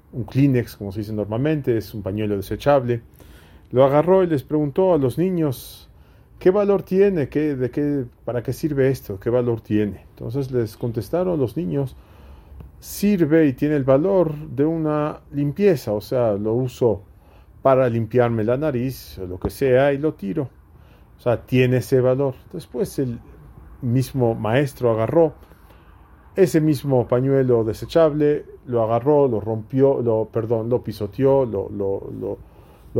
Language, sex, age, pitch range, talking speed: English, male, 40-59, 110-145 Hz, 155 wpm